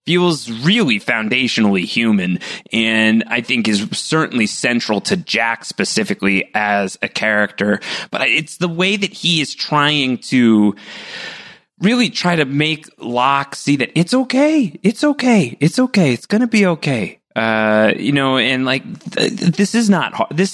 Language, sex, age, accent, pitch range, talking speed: English, male, 30-49, American, 110-165 Hz, 150 wpm